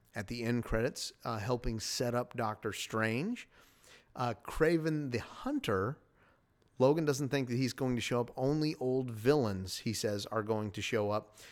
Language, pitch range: English, 110-130 Hz